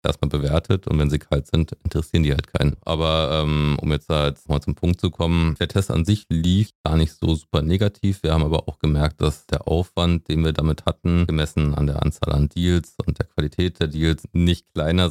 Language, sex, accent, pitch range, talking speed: German, male, German, 75-85 Hz, 225 wpm